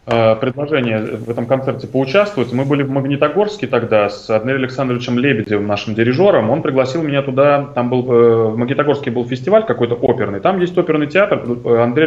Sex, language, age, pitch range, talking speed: male, Russian, 20-39, 115-140 Hz, 165 wpm